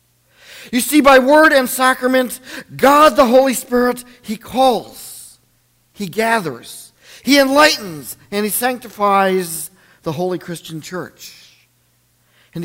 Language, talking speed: English, 115 wpm